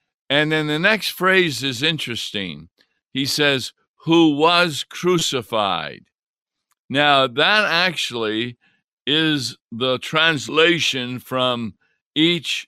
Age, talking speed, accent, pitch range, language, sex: 50-69, 95 wpm, American, 125-155 Hz, English, male